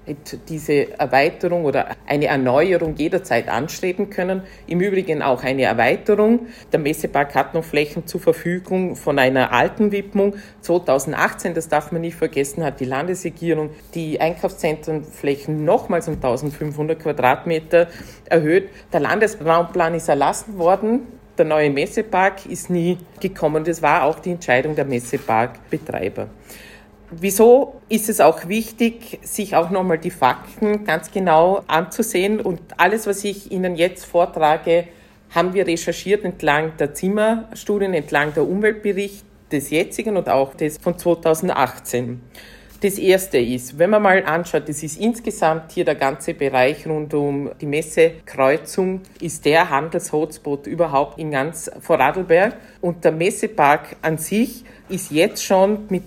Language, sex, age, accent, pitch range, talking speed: German, female, 40-59, Austrian, 150-195 Hz, 135 wpm